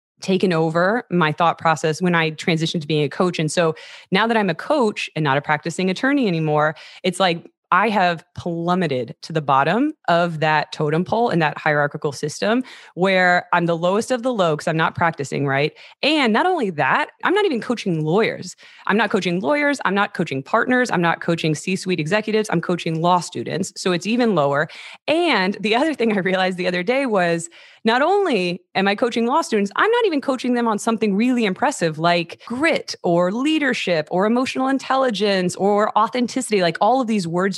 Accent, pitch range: American, 165-225 Hz